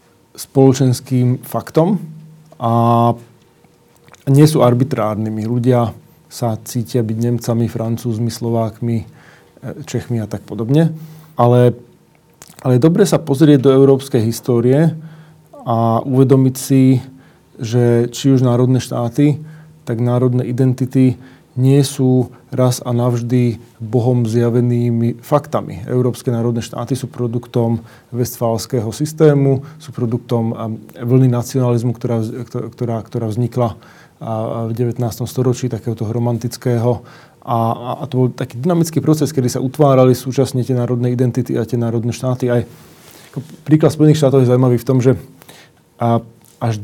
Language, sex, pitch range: Slovak, male, 120-135 Hz